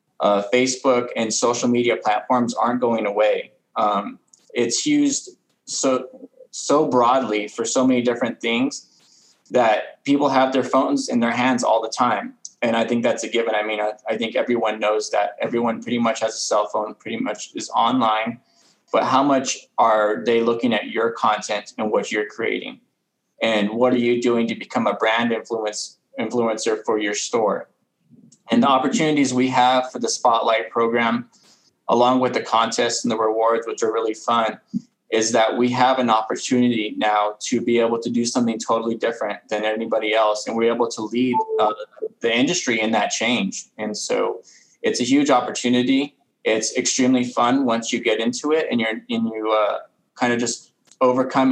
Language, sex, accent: English, male, American